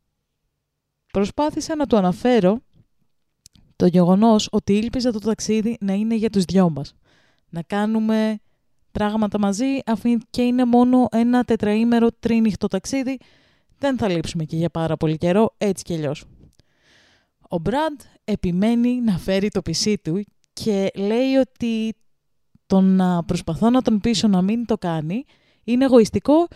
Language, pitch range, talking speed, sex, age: Greek, 200-270 Hz, 140 wpm, female, 20-39